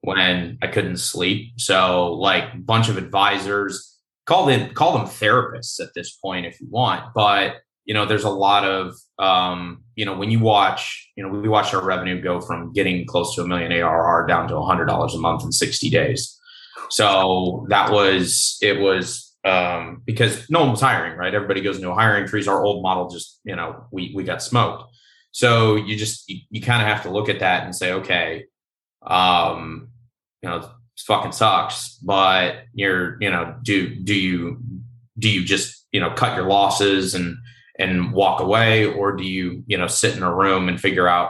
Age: 20-39